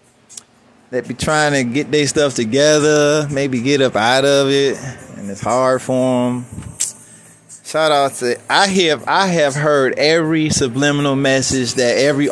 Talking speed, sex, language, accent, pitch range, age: 155 wpm, male, English, American, 120-150 Hz, 20-39